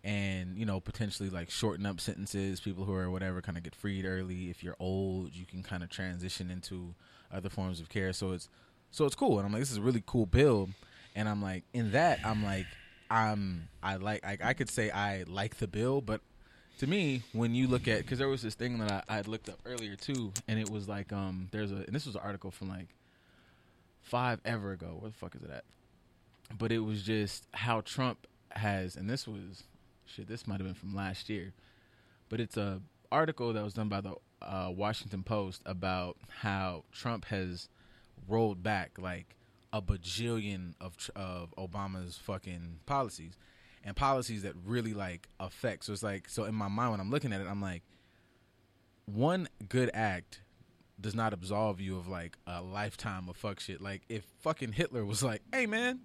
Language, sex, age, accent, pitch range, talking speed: English, male, 20-39, American, 95-115 Hz, 205 wpm